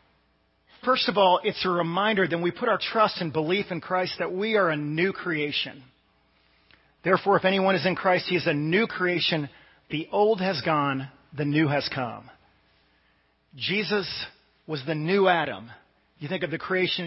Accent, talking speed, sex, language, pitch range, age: American, 175 wpm, male, English, 145-190 Hz, 40-59